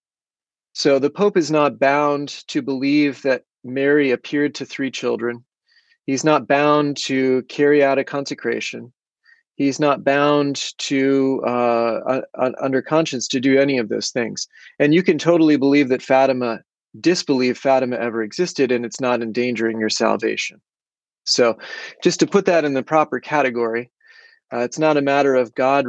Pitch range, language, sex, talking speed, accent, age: 120-145 Hz, English, male, 160 wpm, American, 30-49